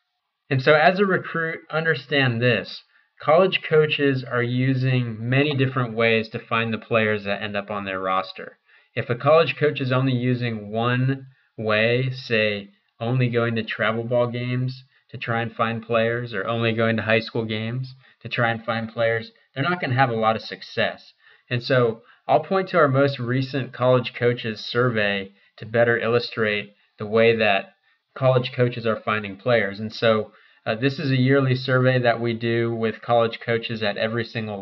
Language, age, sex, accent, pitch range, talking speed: English, 20-39, male, American, 110-130 Hz, 180 wpm